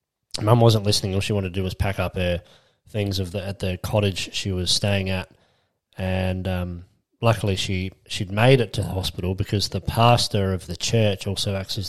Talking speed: 205 wpm